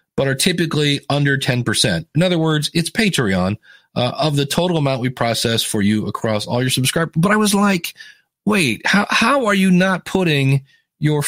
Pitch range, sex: 135-180 Hz, male